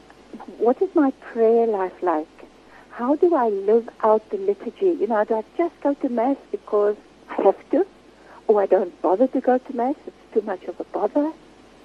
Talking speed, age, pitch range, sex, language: 200 wpm, 60-79, 210-290 Hz, female, English